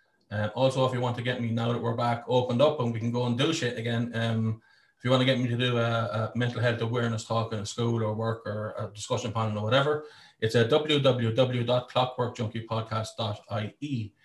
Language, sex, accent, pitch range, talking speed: English, male, Irish, 110-130 Hz, 220 wpm